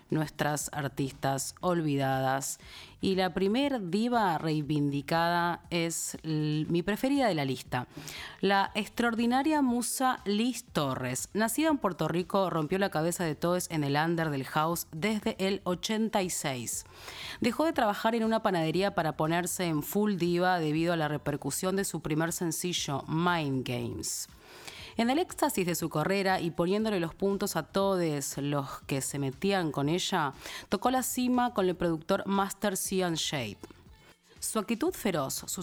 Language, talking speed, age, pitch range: Spanish, 150 wpm, 30-49, 150-200 Hz